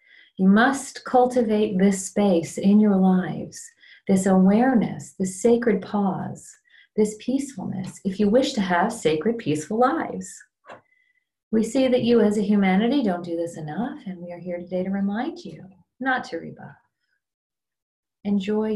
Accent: American